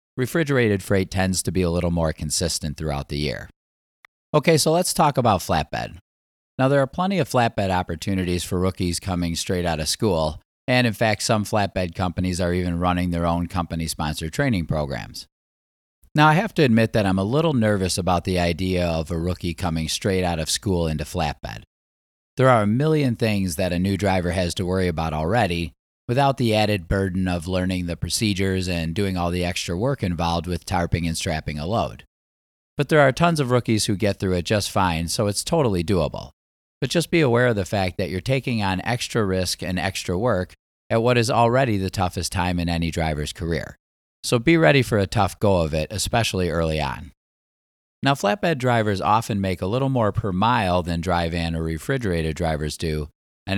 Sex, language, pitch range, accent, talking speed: male, English, 85-115 Hz, American, 200 wpm